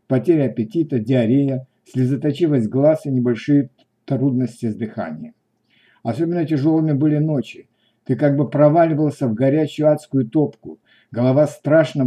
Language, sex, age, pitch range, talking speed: Russian, male, 60-79, 125-150 Hz, 120 wpm